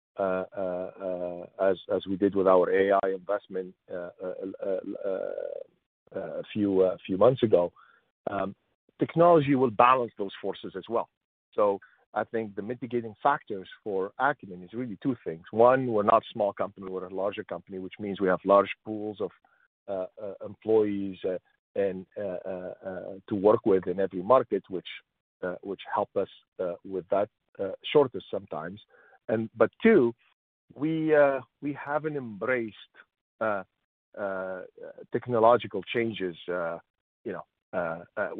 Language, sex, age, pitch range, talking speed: English, male, 50-69, 95-130 Hz, 155 wpm